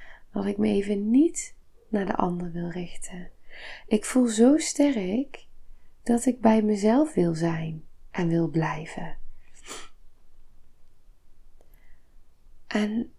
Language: Dutch